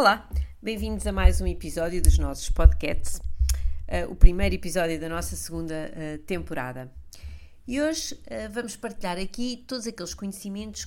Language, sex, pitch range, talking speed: Portuguese, female, 165-195 Hz, 135 wpm